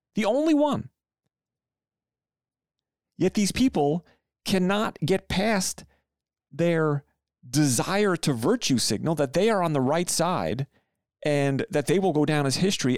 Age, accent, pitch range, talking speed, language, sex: 40-59, American, 105-155 Hz, 135 wpm, English, male